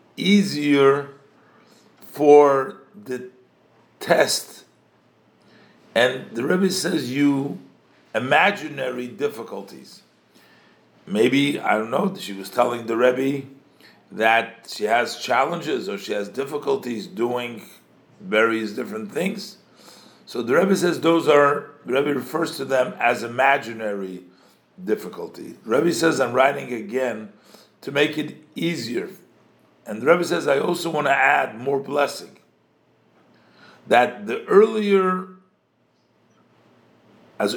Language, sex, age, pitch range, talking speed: English, male, 50-69, 115-165 Hz, 110 wpm